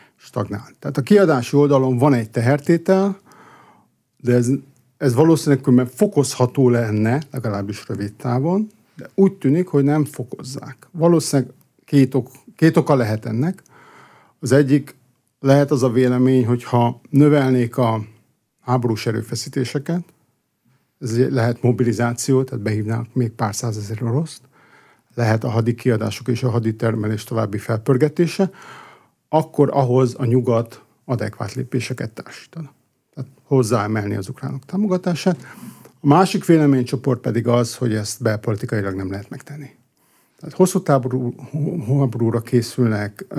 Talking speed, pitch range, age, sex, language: 120 wpm, 120-145 Hz, 50-69, male, Hungarian